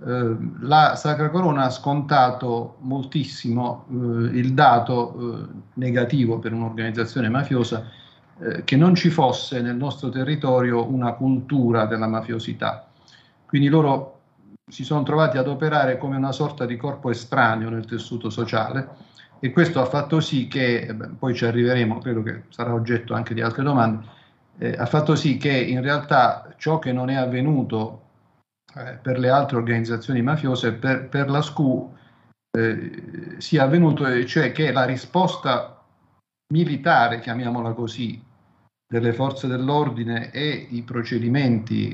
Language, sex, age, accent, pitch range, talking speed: Italian, male, 50-69, native, 115-140 Hz, 140 wpm